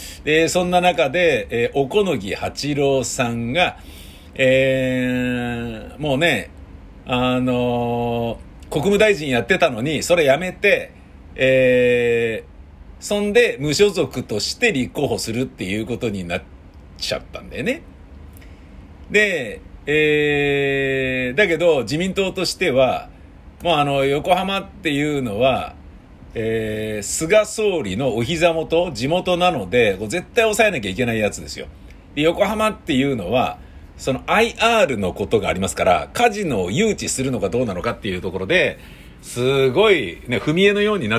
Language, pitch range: Japanese, 105-160 Hz